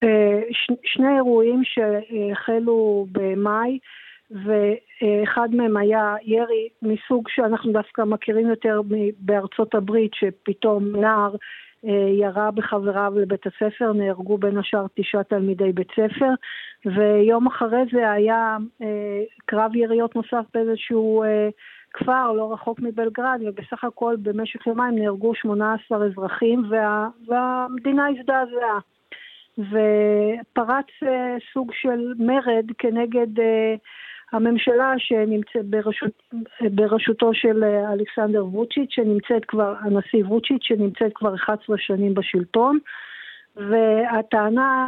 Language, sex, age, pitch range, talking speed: Hebrew, female, 50-69, 210-245 Hz, 95 wpm